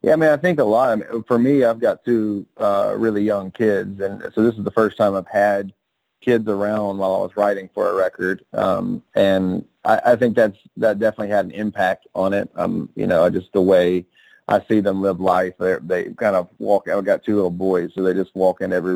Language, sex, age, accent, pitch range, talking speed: English, male, 30-49, American, 95-110 Hz, 235 wpm